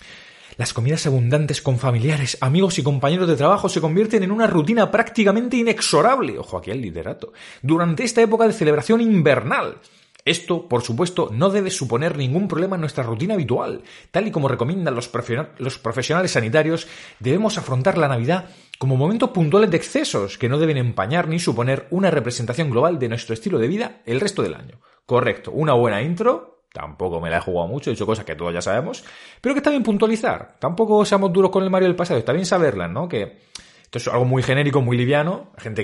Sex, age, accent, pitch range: male, 30-49, Spanish, 100-155 Hz